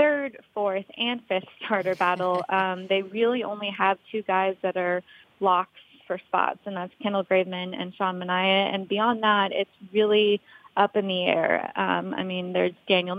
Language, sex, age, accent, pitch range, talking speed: English, female, 20-39, American, 185-210 Hz, 175 wpm